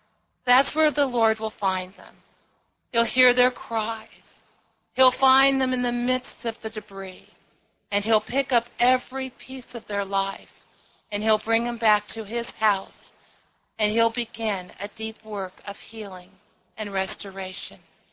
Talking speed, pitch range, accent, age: 155 wpm, 210-260 Hz, American, 40-59